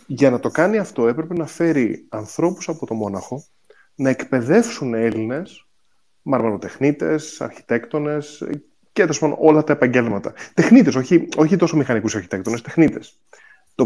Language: Greek